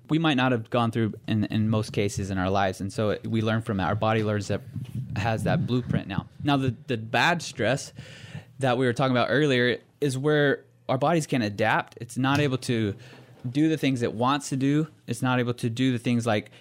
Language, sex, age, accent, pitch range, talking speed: English, male, 20-39, American, 115-135 Hz, 230 wpm